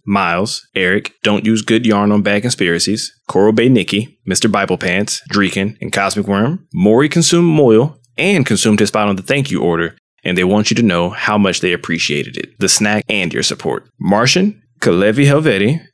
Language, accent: English, American